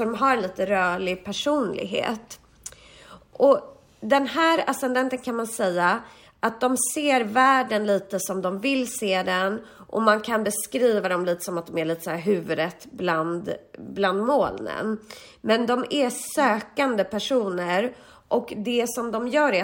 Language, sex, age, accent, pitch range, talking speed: Swedish, female, 30-49, native, 185-250 Hz, 155 wpm